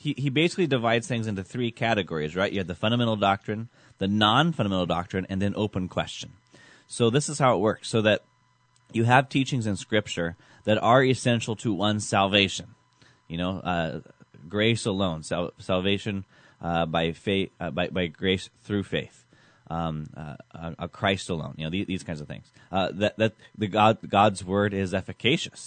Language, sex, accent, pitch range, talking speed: English, male, American, 90-115 Hz, 185 wpm